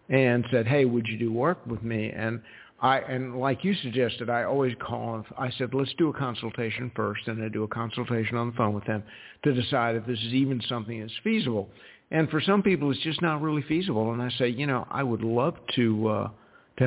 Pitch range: 115-135 Hz